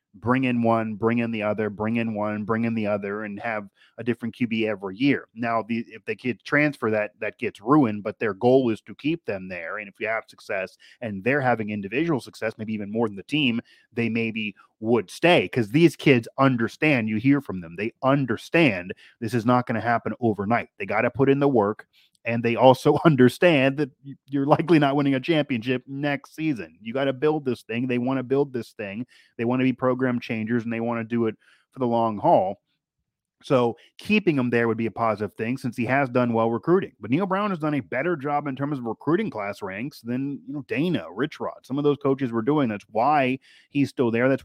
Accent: American